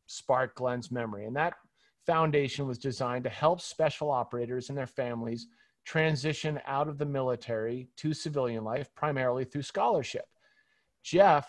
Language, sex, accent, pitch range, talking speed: English, male, American, 130-155 Hz, 140 wpm